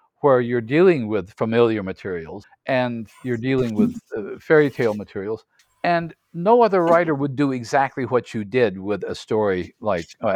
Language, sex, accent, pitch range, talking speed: English, male, American, 115-160 Hz, 170 wpm